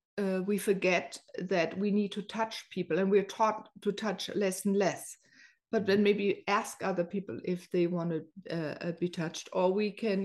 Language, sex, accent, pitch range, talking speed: English, female, German, 185-225 Hz, 195 wpm